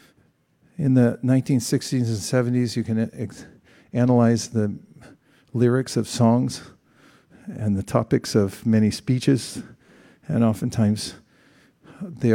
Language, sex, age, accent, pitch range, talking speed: English, male, 50-69, American, 110-135 Hz, 100 wpm